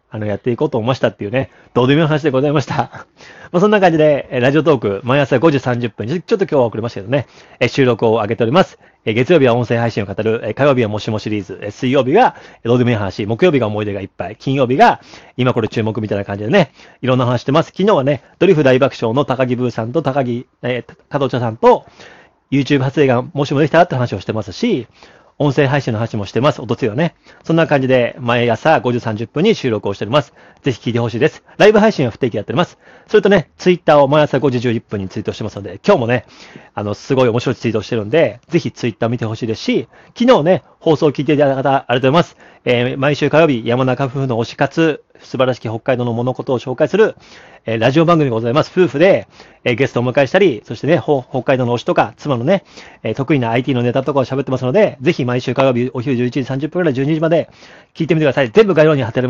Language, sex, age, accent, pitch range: Japanese, male, 40-59, native, 120-150 Hz